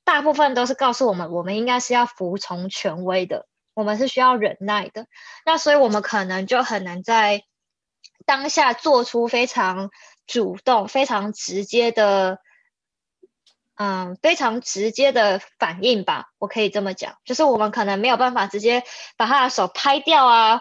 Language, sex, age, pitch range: Chinese, female, 20-39, 210-275 Hz